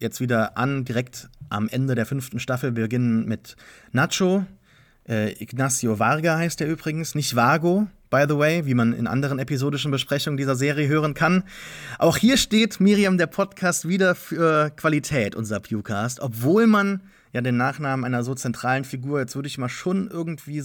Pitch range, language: 115-150 Hz, English